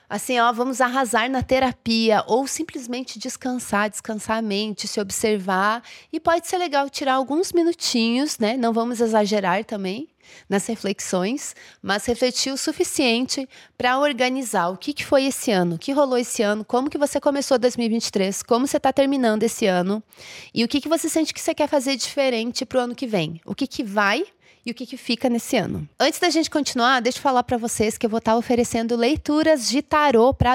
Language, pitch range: Portuguese, 215-265 Hz